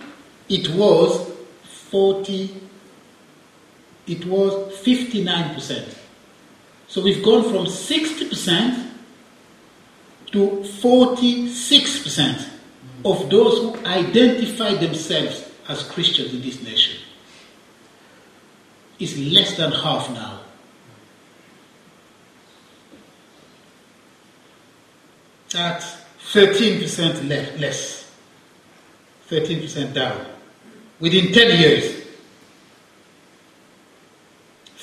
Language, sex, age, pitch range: English, male, 60-79, 160-220 Hz